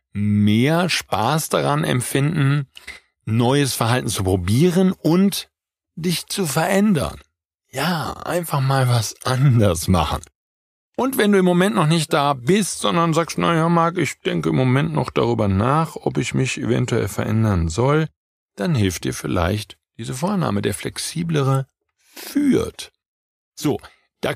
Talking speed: 135 wpm